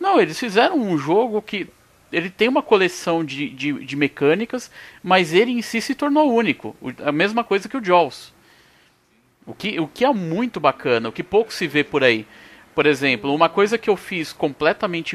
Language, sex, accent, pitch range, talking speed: Portuguese, male, Brazilian, 145-195 Hz, 200 wpm